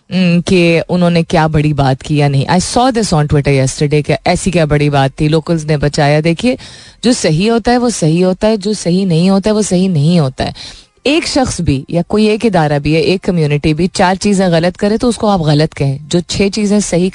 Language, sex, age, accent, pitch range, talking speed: Hindi, female, 30-49, native, 150-210 Hz, 230 wpm